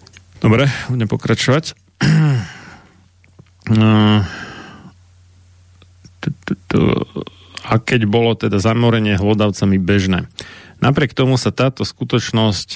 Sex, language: male, Slovak